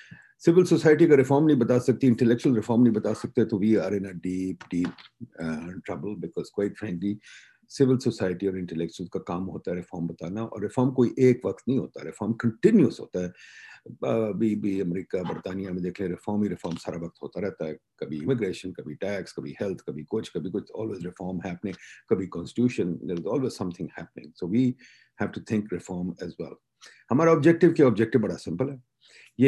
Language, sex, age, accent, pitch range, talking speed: English, male, 50-69, Indian, 90-130 Hz, 195 wpm